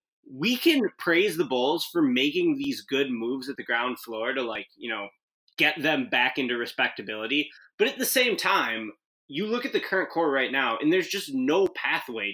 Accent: American